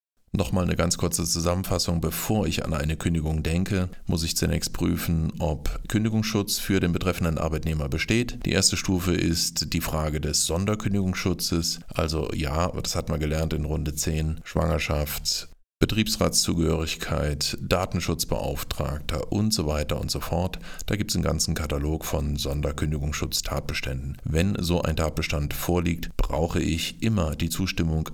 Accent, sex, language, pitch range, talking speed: German, male, German, 75-90 Hz, 140 wpm